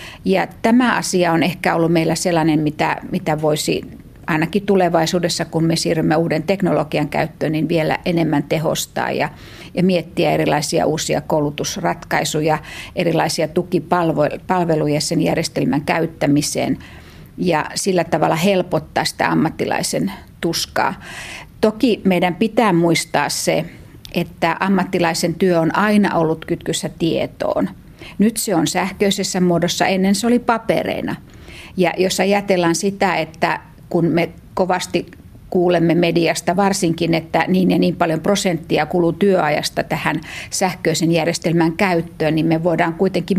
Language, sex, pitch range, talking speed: Finnish, female, 160-190 Hz, 125 wpm